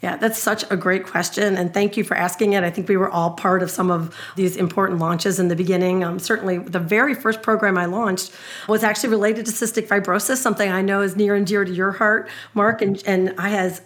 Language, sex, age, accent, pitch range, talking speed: English, female, 40-59, American, 185-215 Hz, 245 wpm